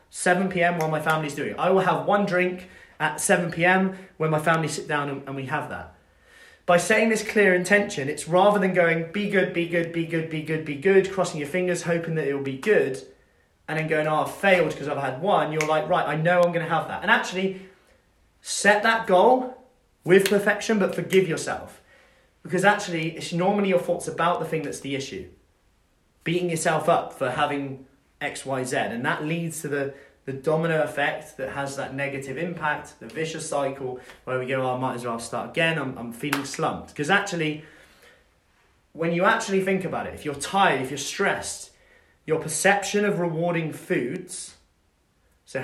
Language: English